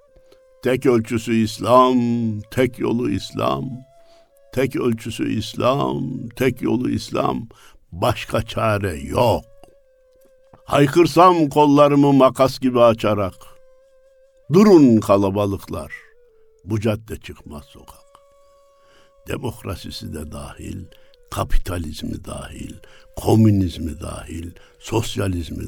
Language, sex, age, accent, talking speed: Turkish, male, 60-79, native, 80 wpm